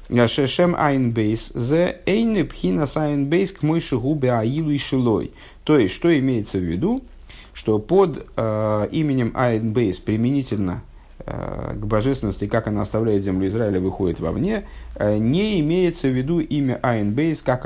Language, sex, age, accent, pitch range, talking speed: Russian, male, 50-69, native, 110-155 Hz, 100 wpm